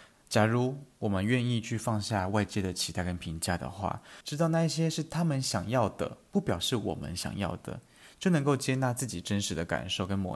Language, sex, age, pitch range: Chinese, male, 20-39, 95-130 Hz